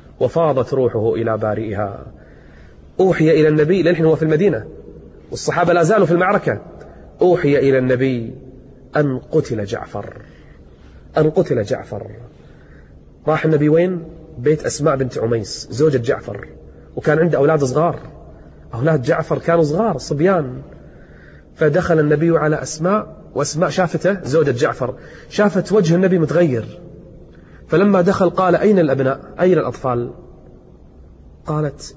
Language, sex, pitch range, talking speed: Arabic, male, 115-160 Hz, 120 wpm